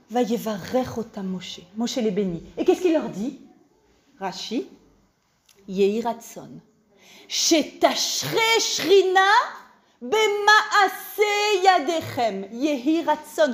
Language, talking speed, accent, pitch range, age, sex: French, 80 wpm, French, 195-295 Hz, 40-59, female